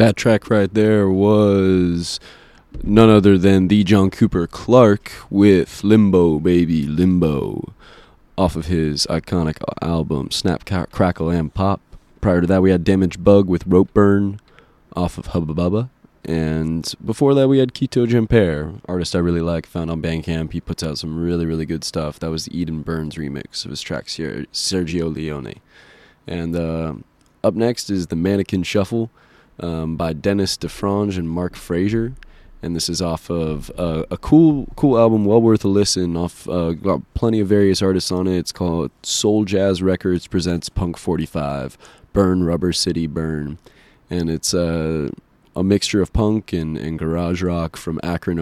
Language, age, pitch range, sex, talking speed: English, 20-39, 80-100 Hz, male, 170 wpm